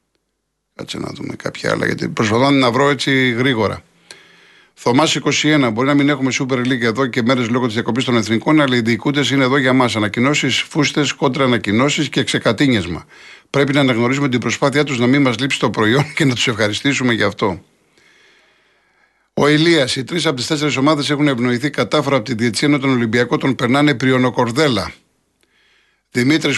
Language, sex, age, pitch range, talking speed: Greek, male, 50-69, 120-145 Hz, 175 wpm